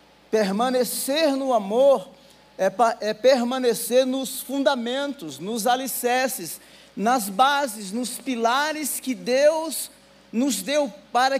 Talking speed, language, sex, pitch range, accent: 100 wpm, Portuguese, male, 245-290 Hz, Brazilian